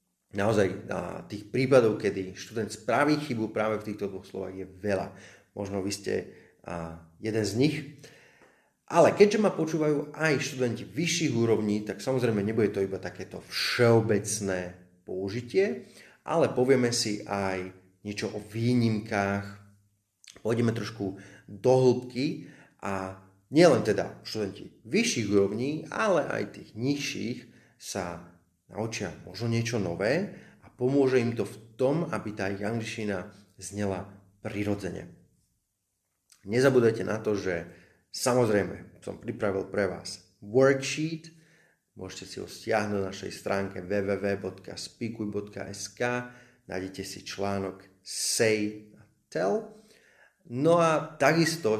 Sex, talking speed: male, 115 wpm